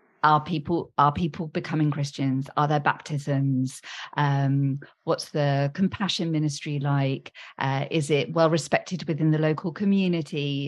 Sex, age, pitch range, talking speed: female, 40-59, 150-195 Hz, 135 wpm